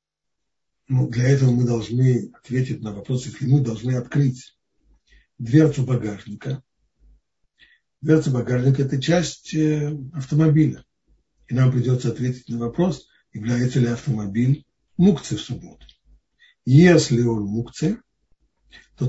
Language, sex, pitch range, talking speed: Russian, male, 115-150 Hz, 115 wpm